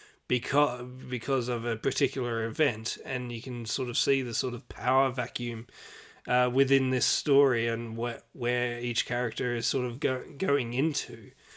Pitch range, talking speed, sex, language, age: 120-140 Hz, 165 wpm, male, English, 30-49